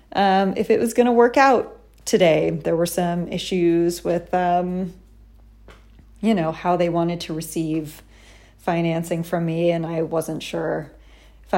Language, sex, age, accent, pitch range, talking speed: English, female, 30-49, American, 165-200 Hz, 150 wpm